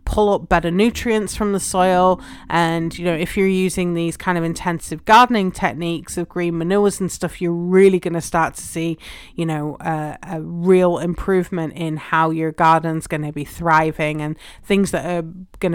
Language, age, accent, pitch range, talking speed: English, 30-49, British, 160-195 Hz, 190 wpm